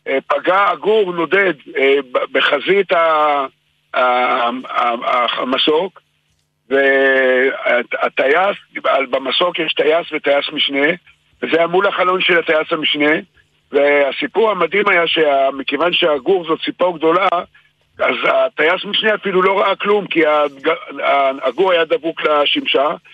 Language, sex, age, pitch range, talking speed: Hebrew, male, 60-79, 155-200 Hz, 100 wpm